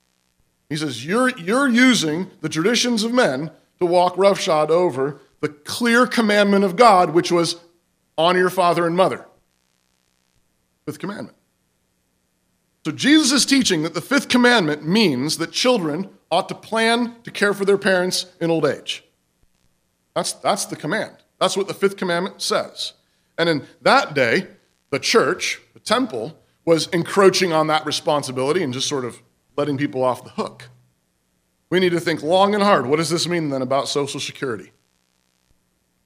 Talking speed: 160 wpm